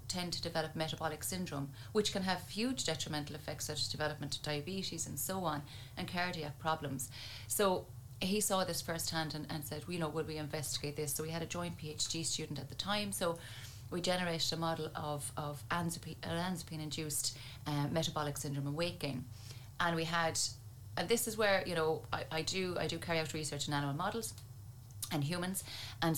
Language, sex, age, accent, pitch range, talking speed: English, female, 30-49, Irish, 140-165 Hz, 190 wpm